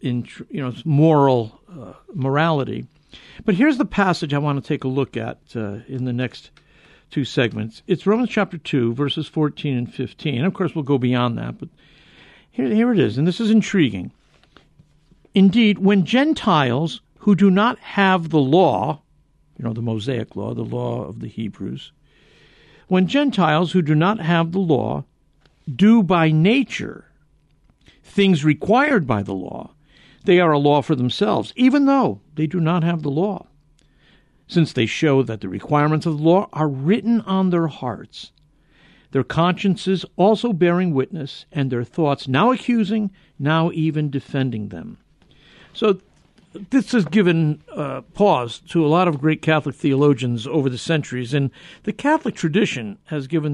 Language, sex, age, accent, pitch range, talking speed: English, male, 60-79, American, 135-190 Hz, 165 wpm